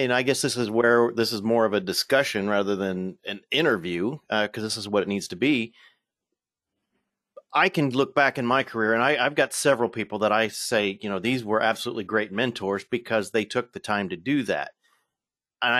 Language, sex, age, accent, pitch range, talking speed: English, male, 40-59, American, 110-140 Hz, 215 wpm